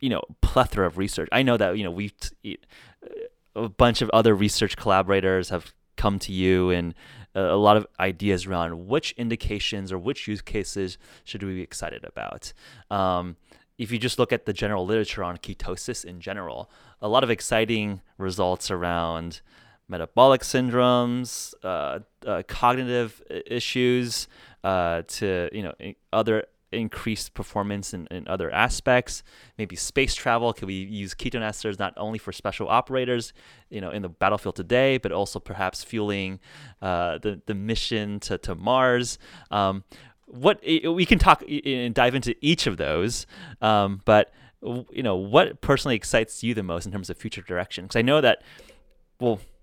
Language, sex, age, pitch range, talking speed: English, male, 20-39, 95-120 Hz, 165 wpm